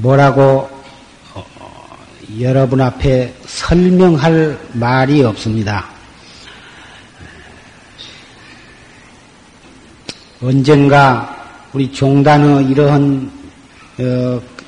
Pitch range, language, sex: 130-155 Hz, Korean, male